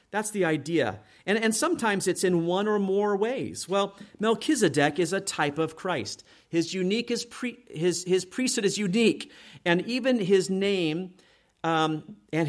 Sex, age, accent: male, 40-59, American